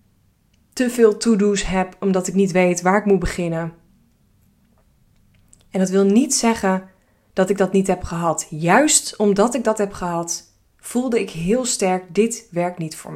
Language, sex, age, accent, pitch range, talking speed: Dutch, female, 20-39, Dutch, 155-200 Hz, 170 wpm